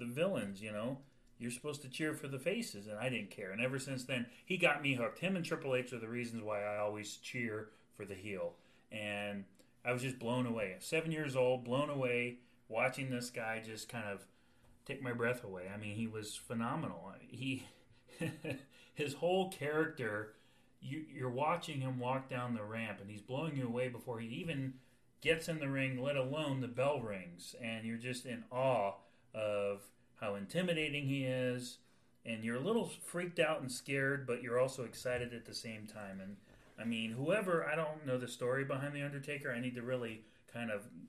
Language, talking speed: English, 195 wpm